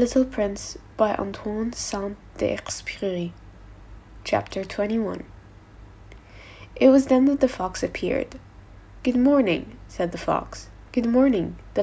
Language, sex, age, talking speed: English, female, 10-29, 115 wpm